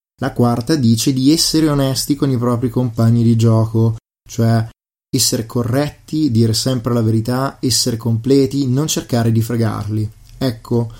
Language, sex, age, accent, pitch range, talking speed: Italian, male, 20-39, native, 115-130 Hz, 140 wpm